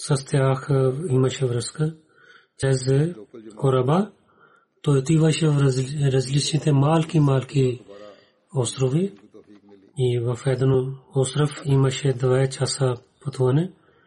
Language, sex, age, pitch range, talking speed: Bulgarian, male, 30-49, 125-155 Hz, 90 wpm